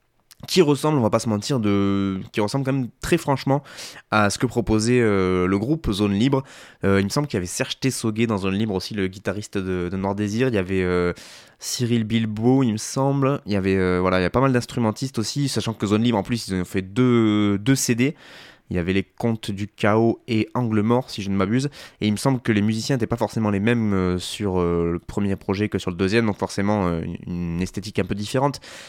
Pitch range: 95-120 Hz